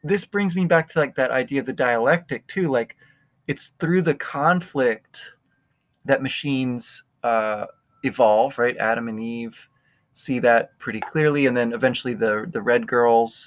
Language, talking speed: English, 160 wpm